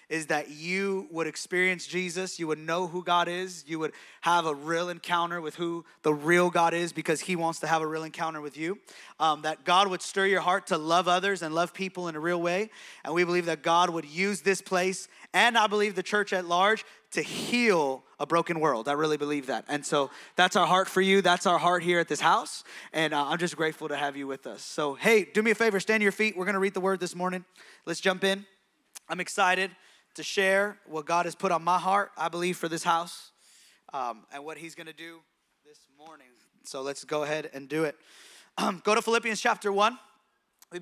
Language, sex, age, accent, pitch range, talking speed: English, male, 20-39, American, 160-195 Hz, 230 wpm